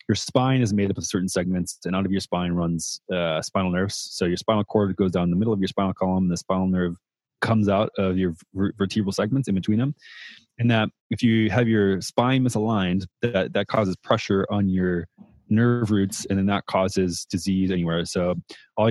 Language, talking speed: English, 210 wpm